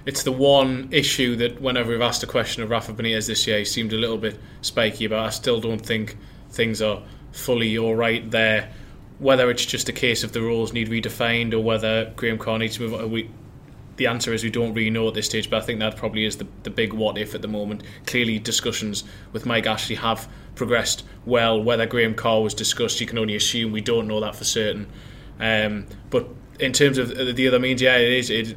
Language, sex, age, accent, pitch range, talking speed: English, male, 20-39, British, 110-120 Hz, 230 wpm